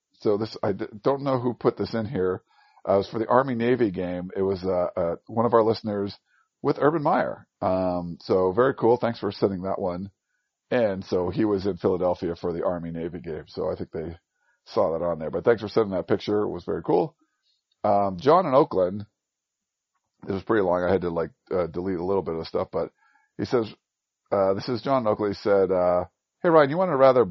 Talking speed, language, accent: 225 wpm, English, American